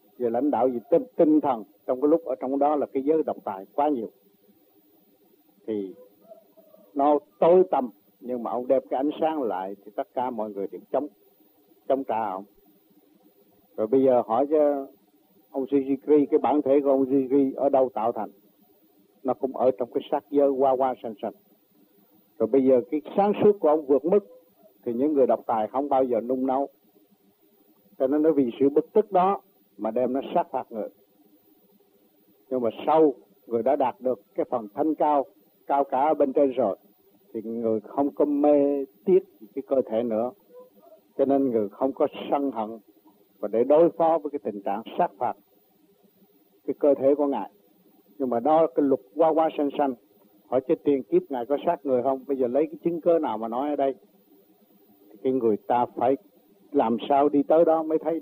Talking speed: 200 wpm